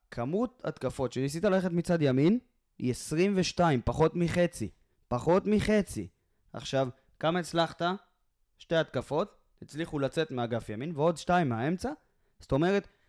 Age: 20-39